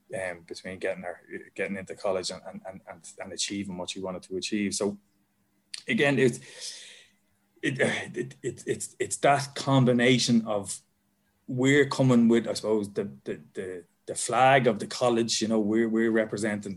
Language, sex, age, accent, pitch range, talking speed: English, male, 20-39, Irish, 100-115 Hz, 165 wpm